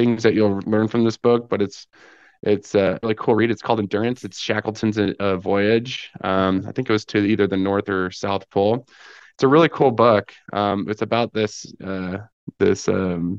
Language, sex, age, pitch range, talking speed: English, male, 20-39, 95-110 Hz, 195 wpm